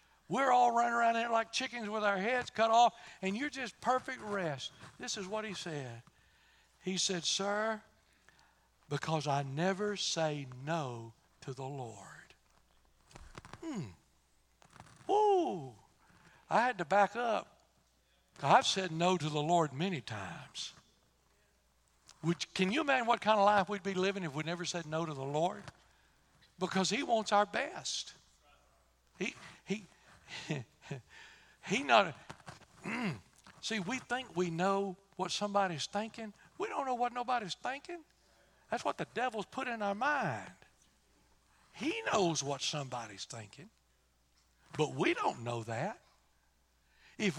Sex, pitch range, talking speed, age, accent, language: male, 145-220 Hz, 140 wpm, 60-79, American, English